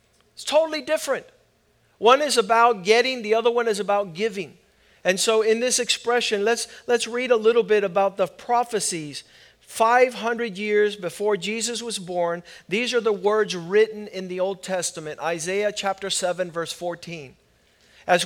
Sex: male